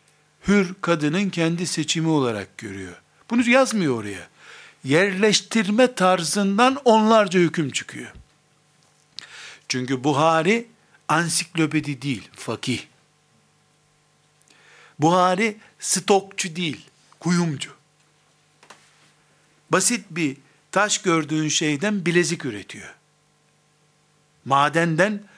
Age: 60-79